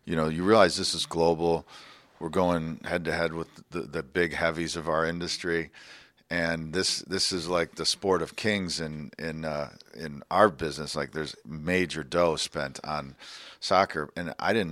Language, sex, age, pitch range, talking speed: English, male, 40-59, 85-105 Hz, 185 wpm